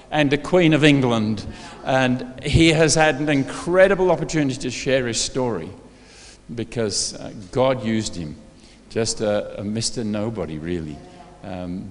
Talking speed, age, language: 140 wpm, 50-69, English